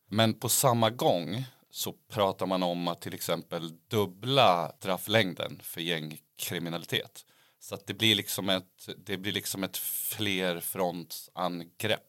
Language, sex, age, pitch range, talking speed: Swedish, male, 30-49, 85-105 Hz, 120 wpm